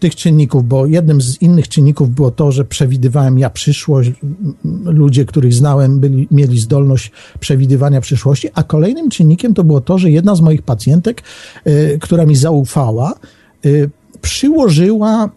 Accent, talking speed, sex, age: native, 150 wpm, male, 50-69